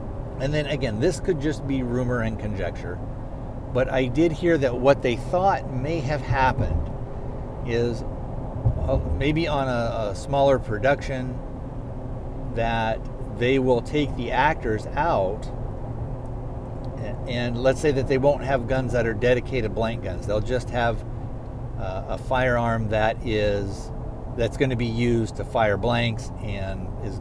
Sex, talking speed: male, 150 wpm